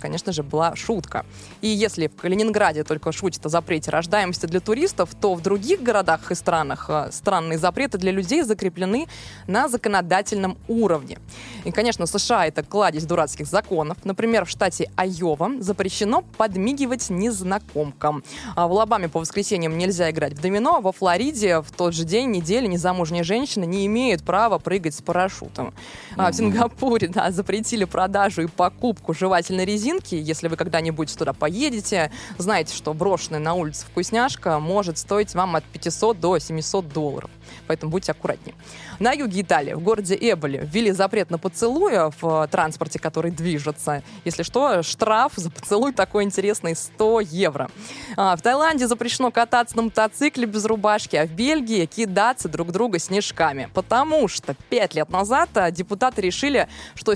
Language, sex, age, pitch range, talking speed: Russian, female, 20-39, 165-220 Hz, 155 wpm